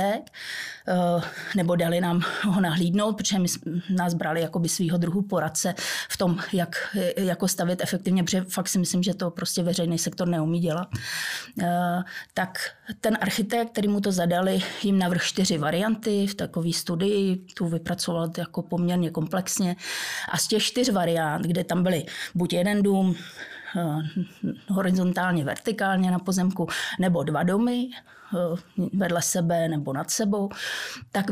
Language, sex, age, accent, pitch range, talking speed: Czech, female, 20-39, native, 175-195 Hz, 140 wpm